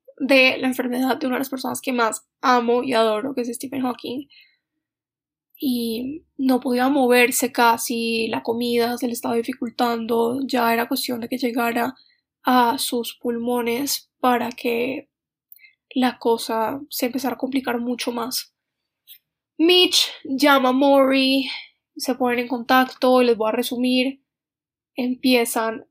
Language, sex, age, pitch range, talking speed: Spanish, female, 10-29, 235-270 Hz, 140 wpm